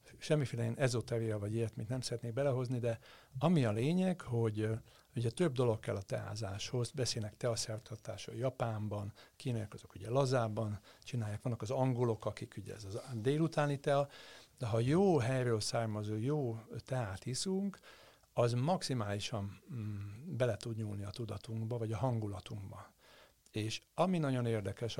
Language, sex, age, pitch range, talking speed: Hungarian, male, 60-79, 105-130 Hz, 140 wpm